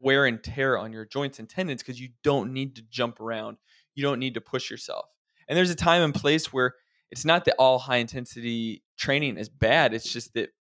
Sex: male